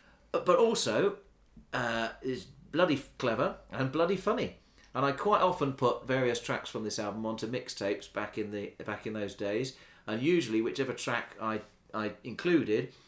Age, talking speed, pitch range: 40-59, 150 wpm, 110-140 Hz